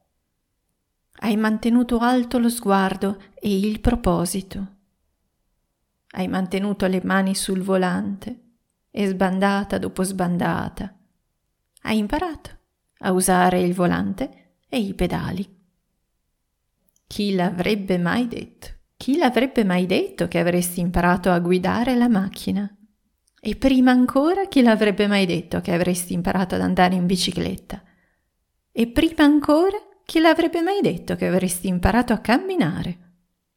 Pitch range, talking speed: 180-230 Hz, 120 wpm